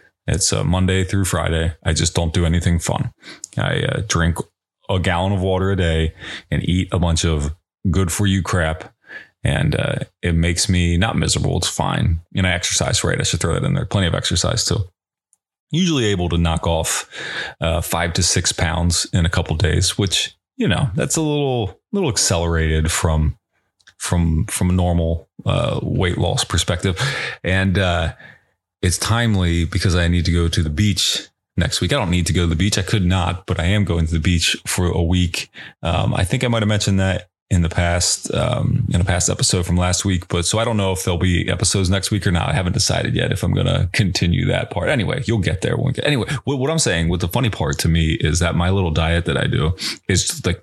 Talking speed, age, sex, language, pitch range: 220 wpm, 30-49, male, English, 85-105 Hz